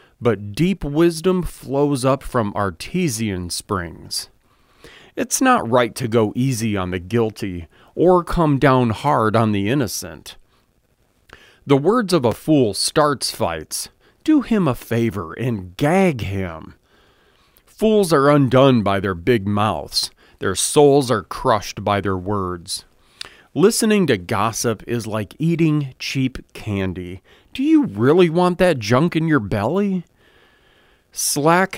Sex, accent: male, American